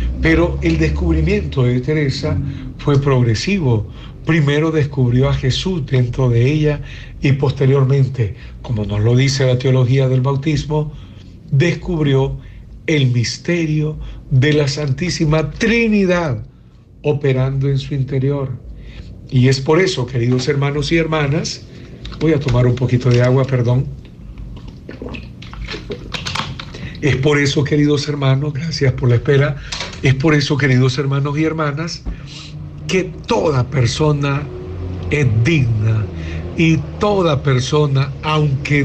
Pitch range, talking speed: 125-150 Hz, 115 wpm